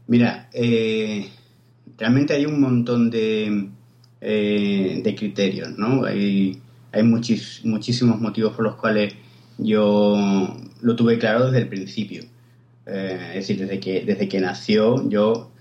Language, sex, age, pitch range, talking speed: Spanish, male, 30-49, 110-125 Hz, 135 wpm